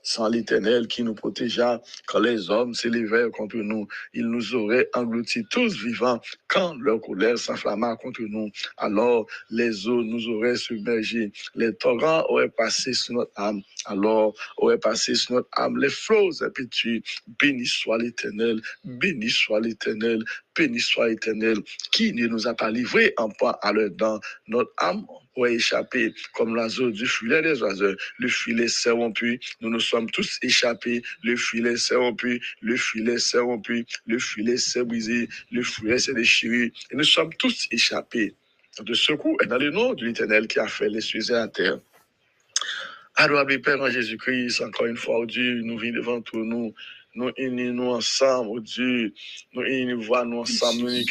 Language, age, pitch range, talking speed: English, 60-79, 115-125 Hz, 170 wpm